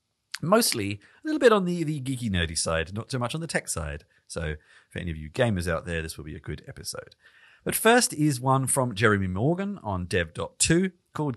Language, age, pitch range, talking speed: English, 40-59, 85-145 Hz, 215 wpm